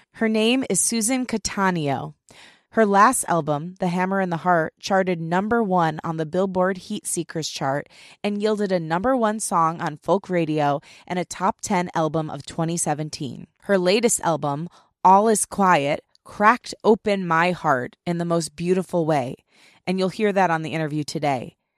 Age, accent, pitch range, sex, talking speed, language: 20-39, American, 160-195 Hz, female, 170 wpm, English